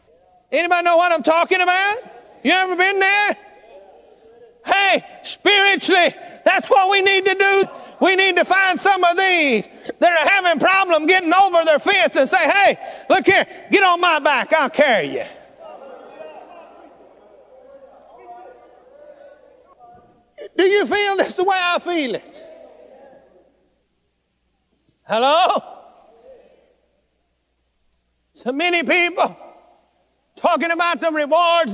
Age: 40-59